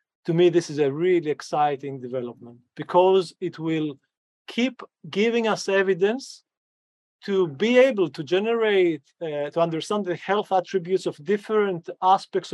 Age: 40-59